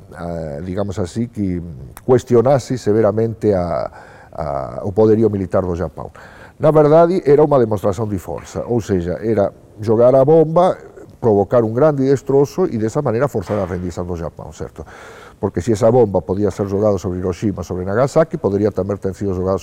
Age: 50-69